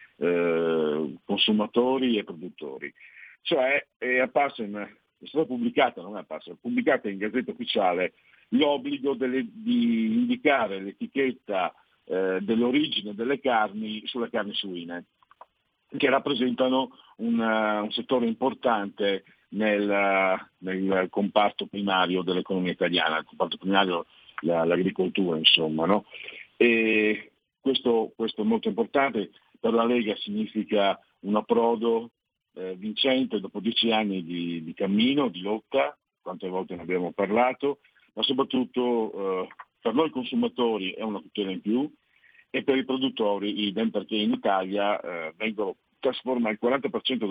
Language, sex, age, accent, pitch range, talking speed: Italian, male, 50-69, native, 95-130 Hz, 120 wpm